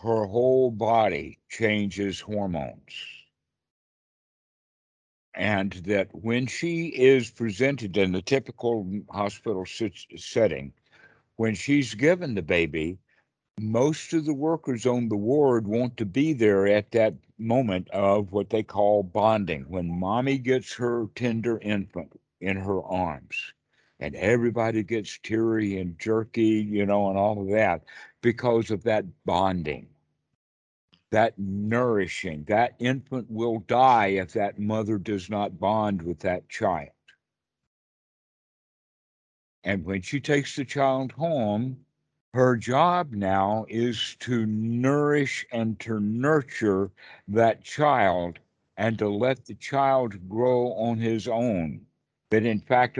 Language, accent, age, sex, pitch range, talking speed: English, American, 60-79, male, 100-125 Hz, 125 wpm